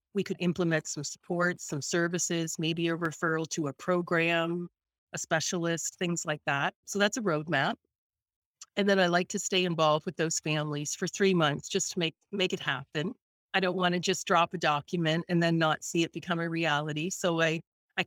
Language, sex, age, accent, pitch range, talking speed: English, female, 40-59, American, 160-190 Hz, 200 wpm